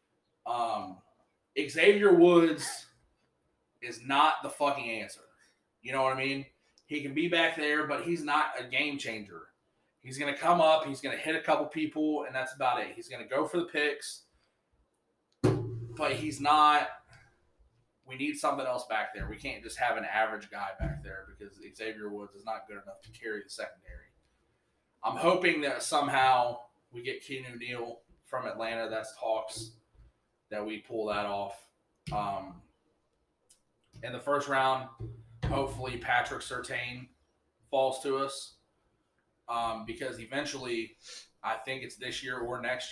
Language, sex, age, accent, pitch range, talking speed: English, male, 20-39, American, 110-145 Hz, 160 wpm